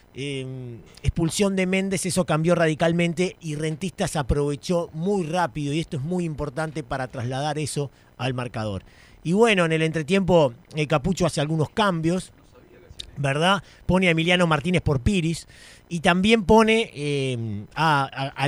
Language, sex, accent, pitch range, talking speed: Spanish, male, Argentinian, 145-190 Hz, 145 wpm